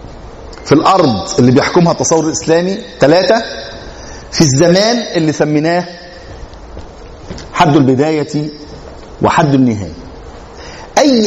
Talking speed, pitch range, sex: 85 wpm, 120-160 Hz, male